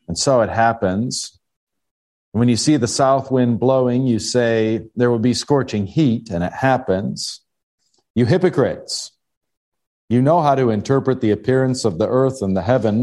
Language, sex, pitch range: English, male, 100-130 Hz